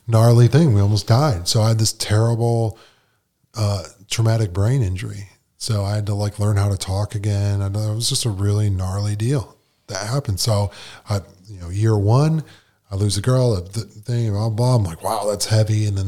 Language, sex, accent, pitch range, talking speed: English, male, American, 100-125 Hz, 205 wpm